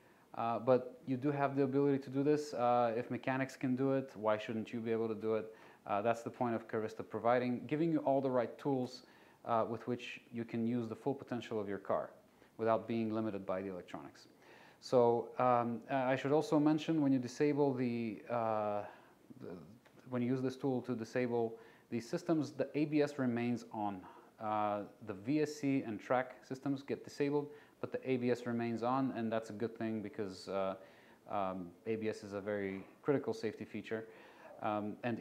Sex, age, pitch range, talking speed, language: male, 30-49, 110-135 Hz, 185 wpm, English